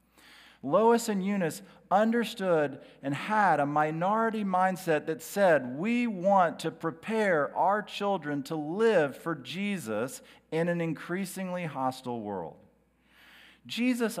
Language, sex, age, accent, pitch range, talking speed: English, male, 40-59, American, 145-205 Hz, 115 wpm